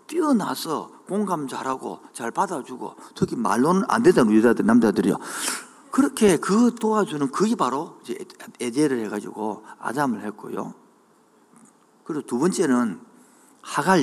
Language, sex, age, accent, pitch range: Korean, male, 50-69, native, 180-255 Hz